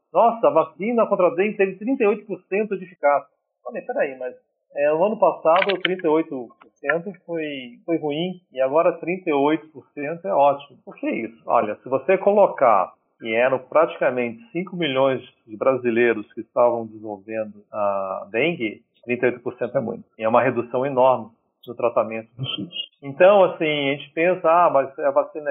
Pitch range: 130-180 Hz